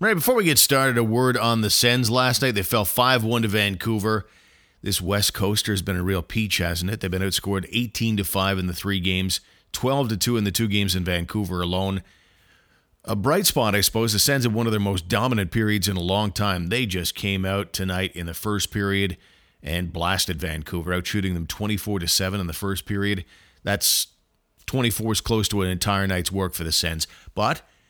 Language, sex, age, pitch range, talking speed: English, male, 40-59, 90-110 Hz, 205 wpm